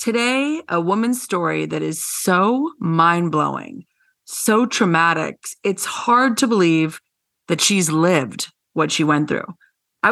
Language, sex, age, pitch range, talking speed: English, female, 30-49, 165-225 Hz, 130 wpm